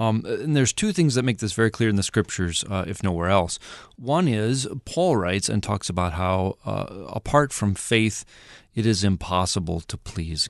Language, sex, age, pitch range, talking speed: English, male, 30-49, 95-115 Hz, 195 wpm